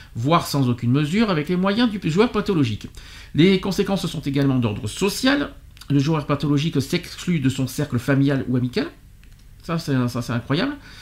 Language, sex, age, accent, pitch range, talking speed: French, male, 50-69, French, 135-195 Hz, 170 wpm